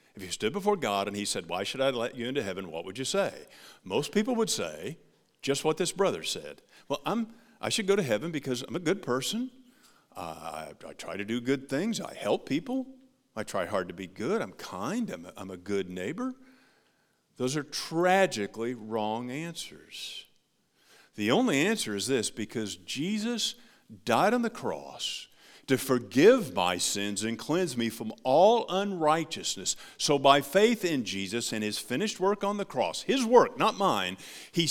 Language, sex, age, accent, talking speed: English, male, 50-69, American, 185 wpm